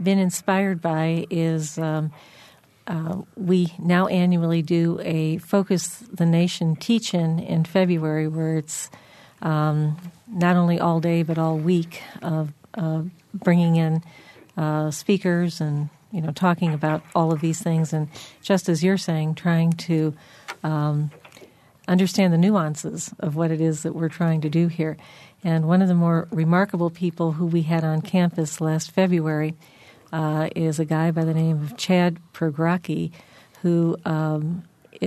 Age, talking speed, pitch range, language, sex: 50-69, 155 wpm, 160-180 Hz, English, female